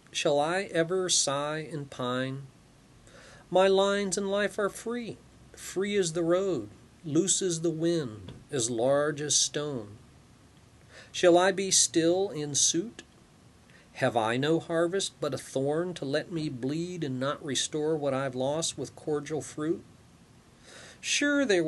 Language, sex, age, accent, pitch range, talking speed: English, male, 40-59, American, 130-175 Hz, 145 wpm